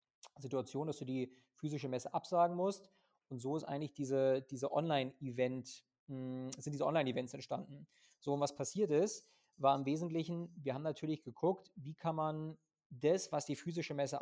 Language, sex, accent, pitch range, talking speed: German, male, German, 135-165 Hz, 170 wpm